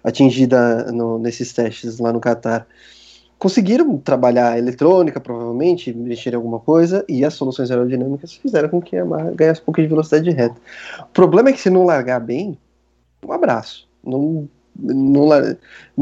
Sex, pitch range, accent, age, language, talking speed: male, 120-150 Hz, Brazilian, 20-39, Portuguese, 165 wpm